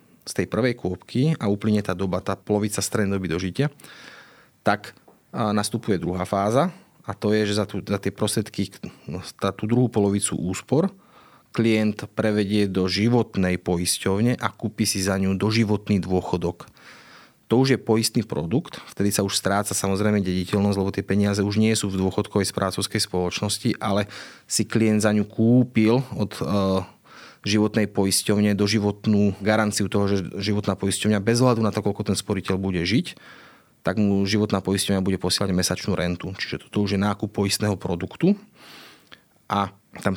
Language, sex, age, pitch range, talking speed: Slovak, male, 30-49, 95-110 Hz, 160 wpm